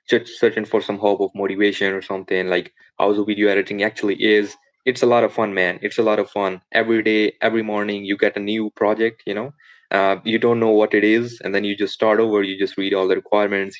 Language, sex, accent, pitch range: English, male, Indian, 95-110 Hz